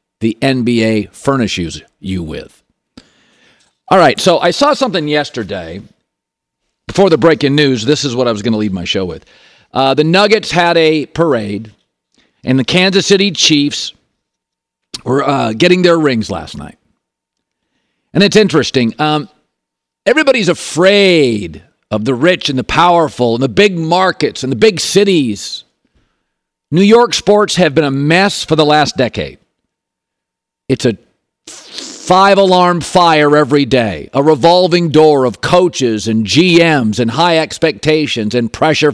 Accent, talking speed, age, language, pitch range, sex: American, 145 wpm, 50-69, English, 130-175 Hz, male